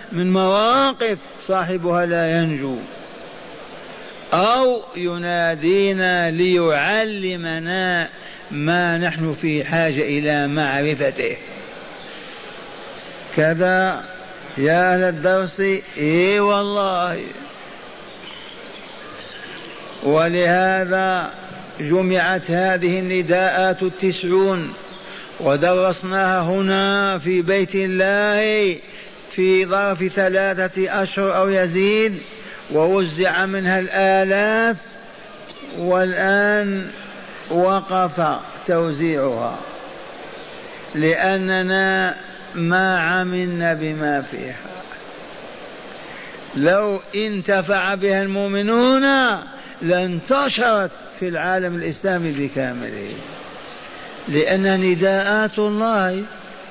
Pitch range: 175-195 Hz